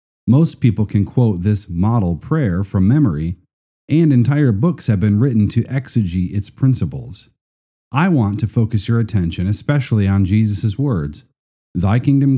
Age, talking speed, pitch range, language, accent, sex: 40-59, 150 wpm, 95-130 Hz, English, American, male